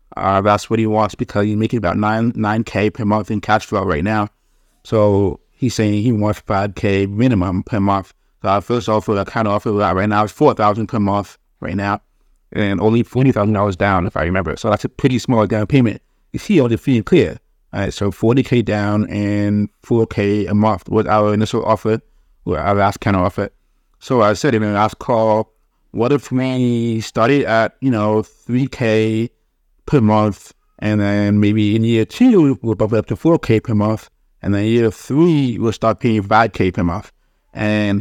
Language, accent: English, American